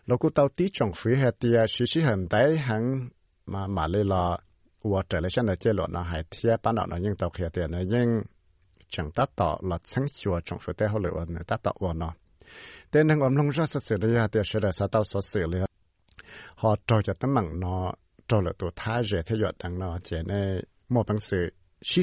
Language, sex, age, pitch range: English, male, 60-79, 90-120 Hz